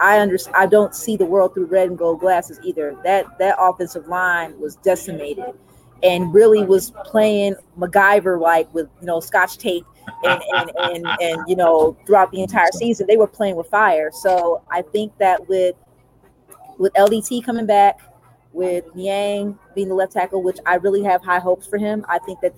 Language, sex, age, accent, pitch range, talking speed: English, female, 30-49, American, 175-210 Hz, 190 wpm